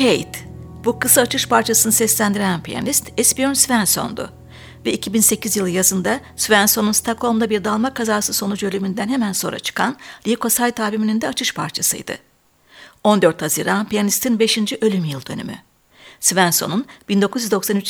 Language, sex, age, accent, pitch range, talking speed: Turkish, female, 60-79, native, 195-230 Hz, 125 wpm